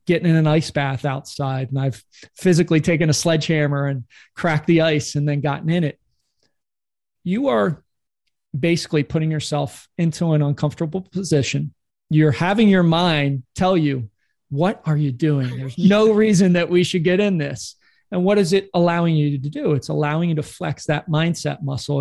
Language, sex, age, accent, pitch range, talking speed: English, male, 40-59, American, 145-175 Hz, 175 wpm